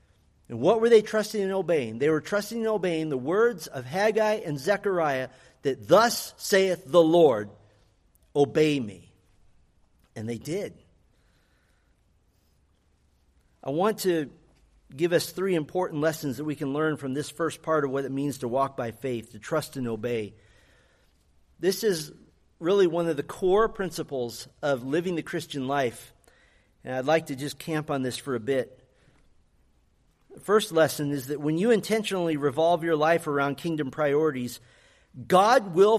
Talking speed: 160 wpm